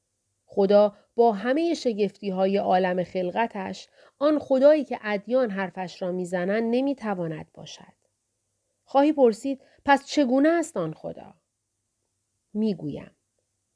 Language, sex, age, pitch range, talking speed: Persian, female, 40-59, 185-245 Hz, 100 wpm